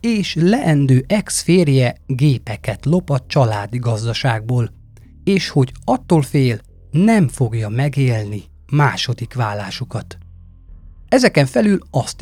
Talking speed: 100 wpm